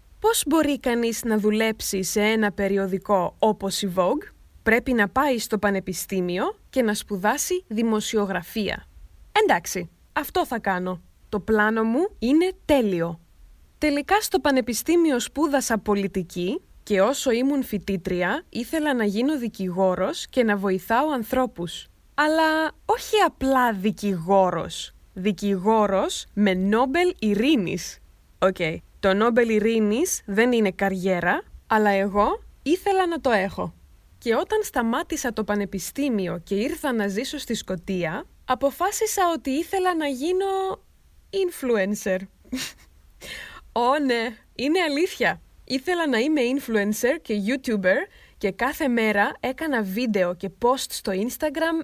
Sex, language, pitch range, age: female, Greek, 200-285 Hz, 20-39